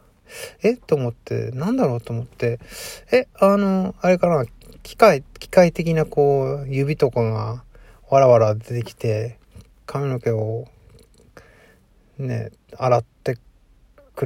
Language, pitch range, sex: Japanese, 115-145 Hz, male